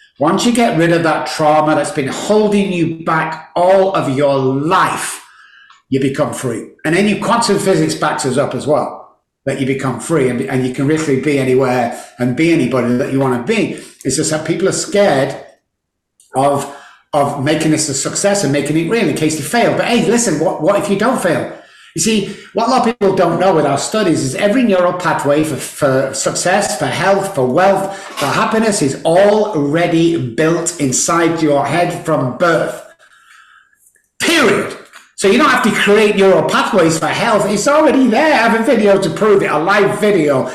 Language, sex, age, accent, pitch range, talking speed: English, male, 60-79, British, 145-195 Hz, 200 wpm